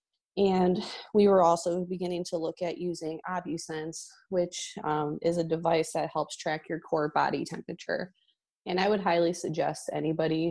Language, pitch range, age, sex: English, 155-180 Hz, 20-39, female